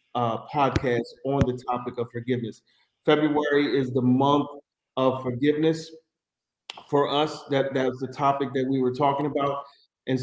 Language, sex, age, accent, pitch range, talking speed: English, male, 40-59, American, 125-145 Hz, 145 wpm